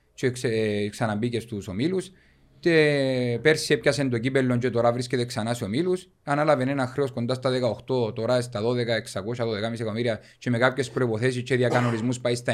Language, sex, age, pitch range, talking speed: Greek, male, 30-49, 115-145 Hz, 165 wpm